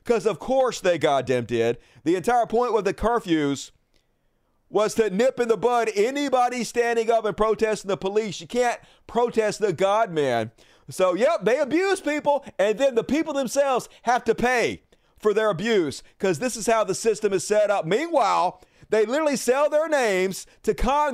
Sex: male